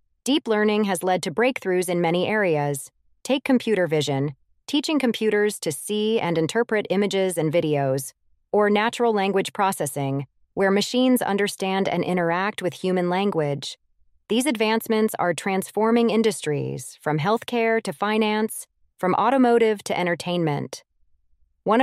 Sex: female